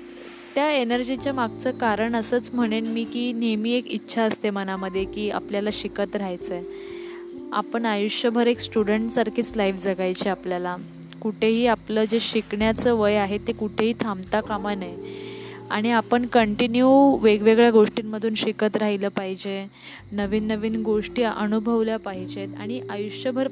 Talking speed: 135 wpm